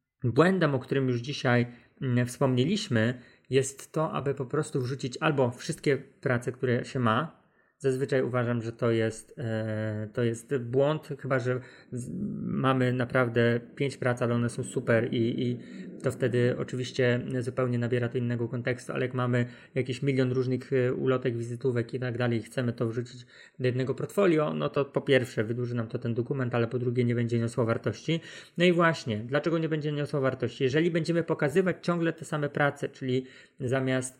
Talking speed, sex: 170 wpm, male